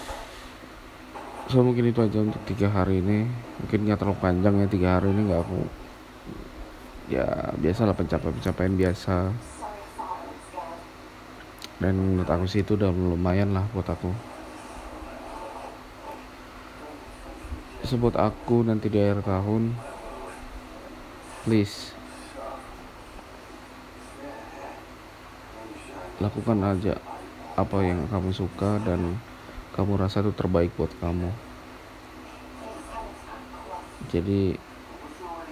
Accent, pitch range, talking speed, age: native, 85-100 Hz, 95 wpm, 20-39